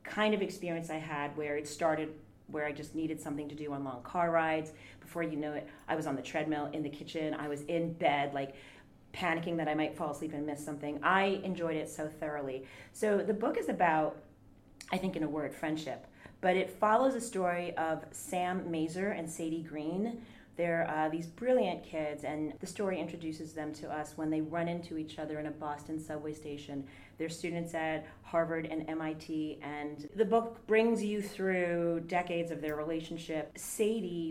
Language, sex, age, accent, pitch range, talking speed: English, female, 30-49, American, 150-185 Hz, 195 wpm